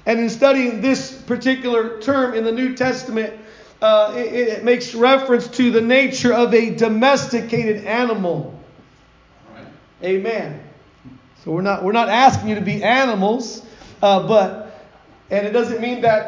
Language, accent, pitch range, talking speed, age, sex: English, American, 225-260 Hz, 150 wpm, 40-59, male